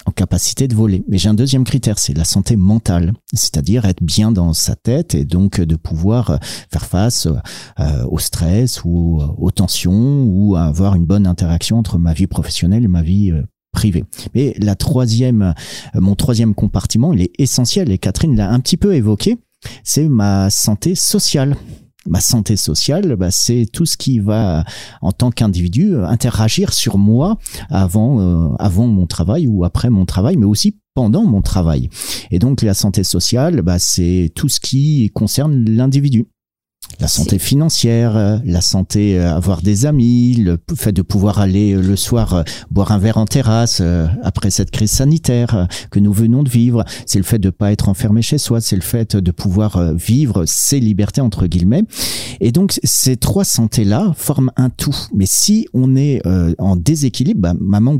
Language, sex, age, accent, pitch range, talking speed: French, male, 40-59, French, 95-125 Hz, 180 wpm